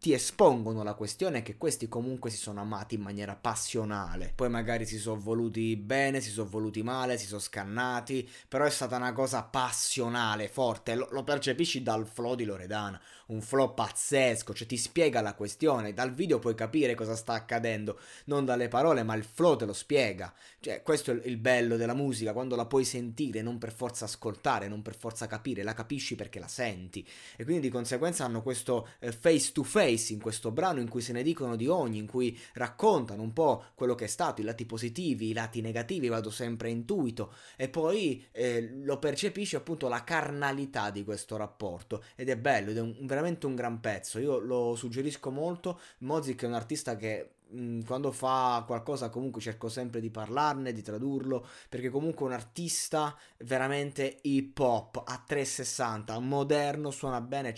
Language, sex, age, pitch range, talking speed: Italian, male, 20-39, 110-135 Hz, 185 wpm